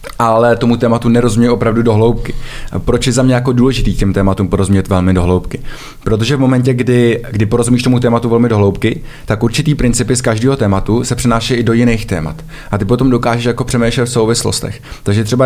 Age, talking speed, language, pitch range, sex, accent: 20-39, 200 wpm, Czech, 105-125 Hz, male, native